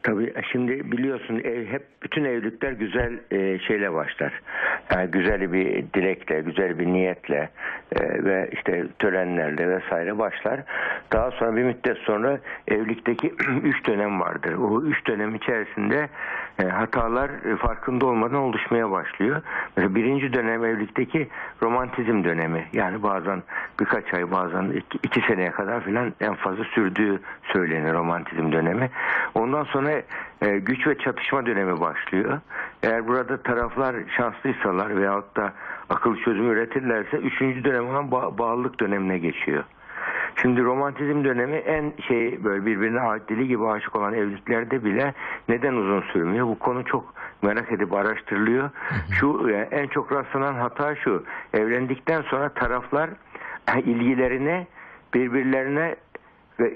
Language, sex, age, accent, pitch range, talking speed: Turkish, male, 60-79, native, 100-130 Hz, 125 wpm